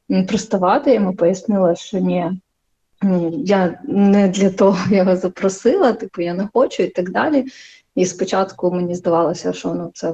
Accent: native